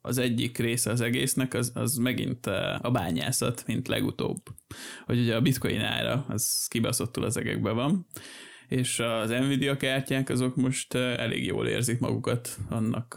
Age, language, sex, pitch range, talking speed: 20-39, Hungarian, male, 115-130 Hz, 150 wpm